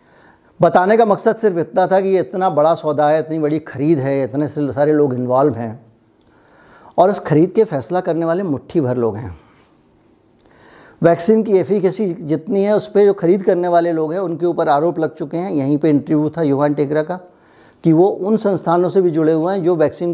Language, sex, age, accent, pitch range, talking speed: Hindi, male, 60-79, native, 145-180 Hz, 205 wpm